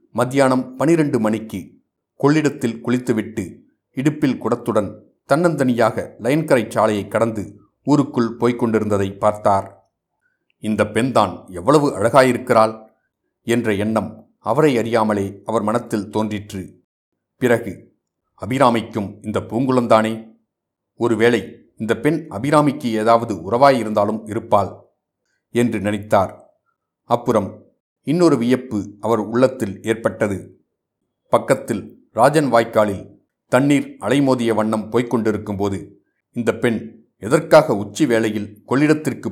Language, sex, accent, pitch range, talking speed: Tamil, male, native, 105-125 Hz, 90 wpm